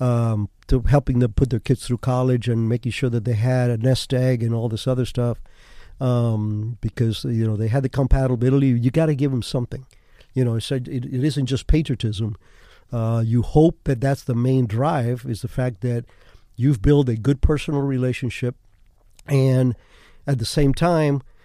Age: 50-69